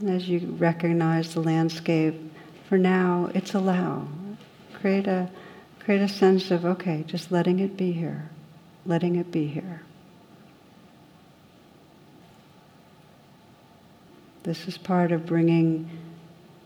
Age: 60-79